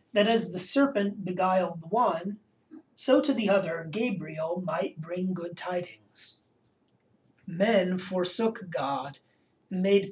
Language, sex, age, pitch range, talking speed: English, male, 30-49, 170-220 Hz, 125 wpm